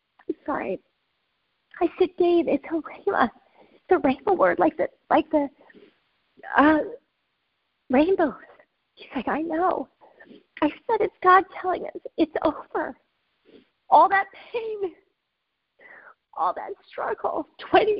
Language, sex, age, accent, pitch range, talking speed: English, female, 40-59, American, 270-375 Hz, 115 wpm